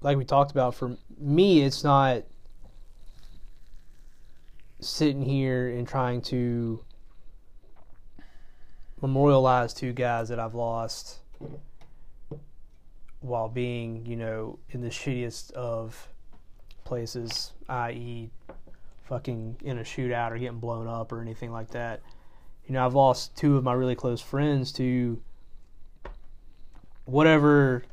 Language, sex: English, male